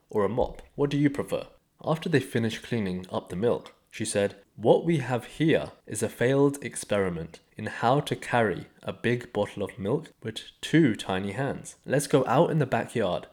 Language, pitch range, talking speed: English, 100-125 Hz, 195 wpm